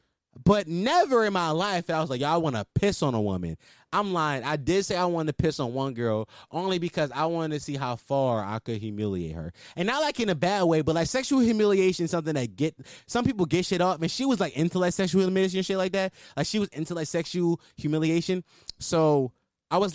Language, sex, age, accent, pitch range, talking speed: English, male, 20-39, American, 135-190 Hz, 255 wpm